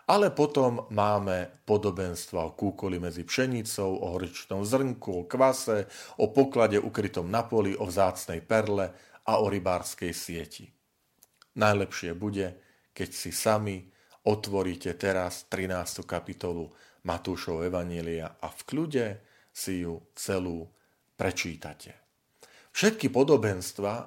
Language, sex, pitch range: Slovak, male, 90-110 Hz